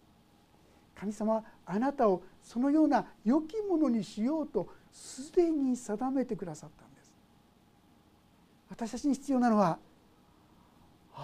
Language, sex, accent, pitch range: Japanese, male, native, 200-295 Hz